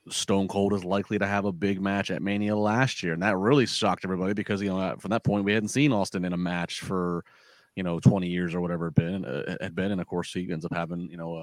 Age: 30-49